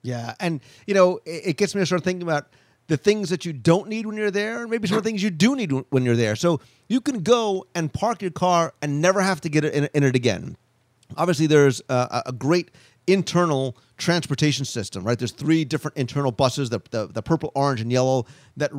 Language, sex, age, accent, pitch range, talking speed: English, male, 40-59, American, 135-175 Hz, 225 wpm